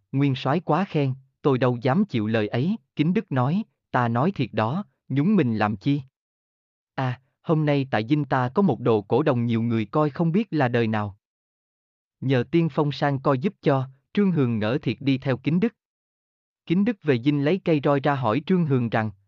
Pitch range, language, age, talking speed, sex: 115-165 Hz, Vietnamese, 20-39, 210 wpm, male